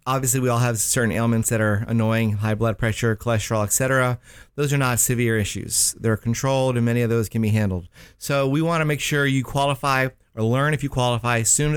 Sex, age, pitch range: male, 30-49, 110-130 Hz